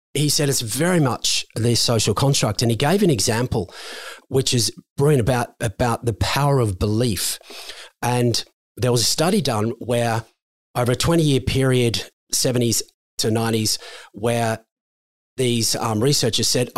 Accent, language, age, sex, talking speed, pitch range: Australian, English, 40-59, male, 145 wpm, 110-135 Hz